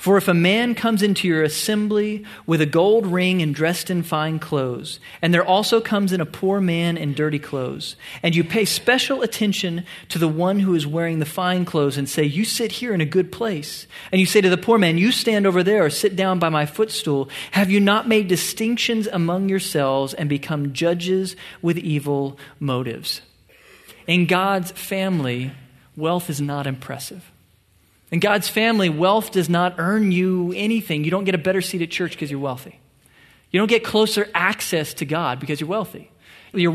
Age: 40-59